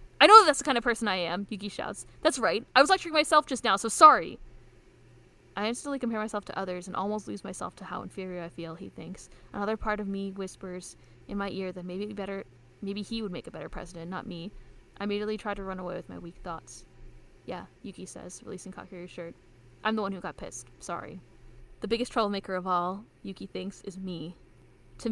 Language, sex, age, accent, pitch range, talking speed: English, female, 10-29, American, 175-220 Hz, 215 wpm